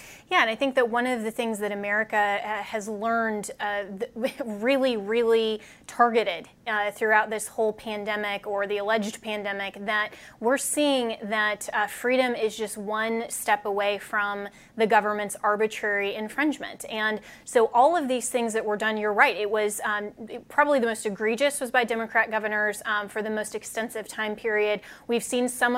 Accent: American